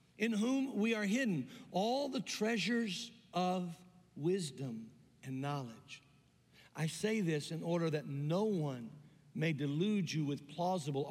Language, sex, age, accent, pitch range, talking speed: English, male, 50-69, American, 165-215 Hz, 135 wpm